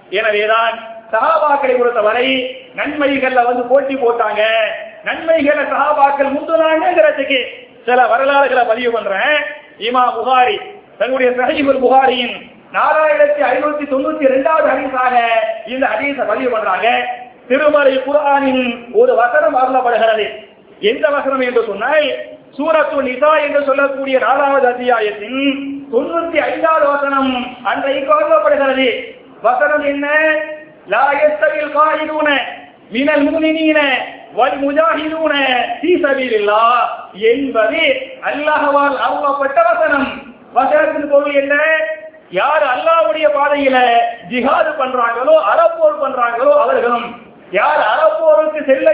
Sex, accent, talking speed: male, native, 55 wpm